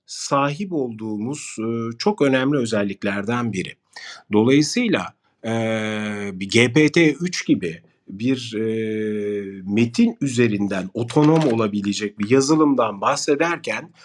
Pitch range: 115-155 Hz